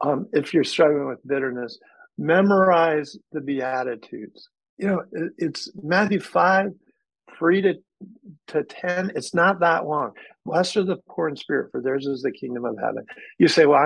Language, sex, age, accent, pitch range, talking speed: English, male, 50-69, American, 135-170 Hz, 170 wpm